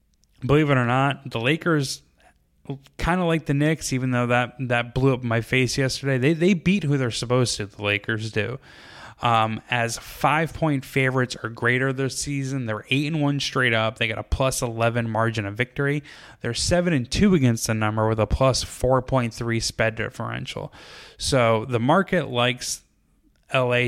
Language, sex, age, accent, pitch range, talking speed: English, male, 10-29, American, 105-130 Hz, 185 wpm